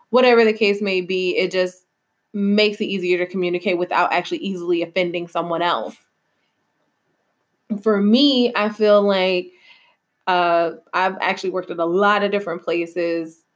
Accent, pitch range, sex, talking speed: American, 180-210 Hz, female, 145 wpm